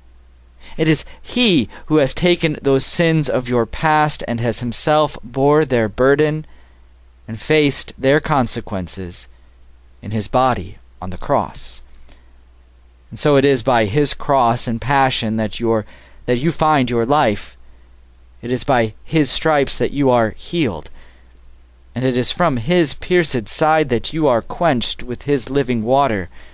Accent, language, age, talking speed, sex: American, English, 40-59, 150 wpm, male